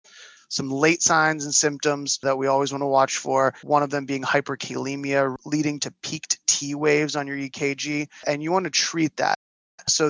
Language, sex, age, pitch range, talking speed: English, male, 20-39, 135-155 Hz, 190 wpm